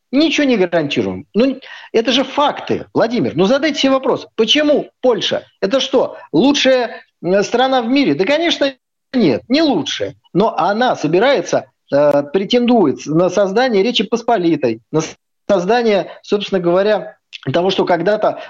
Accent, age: native, 50-69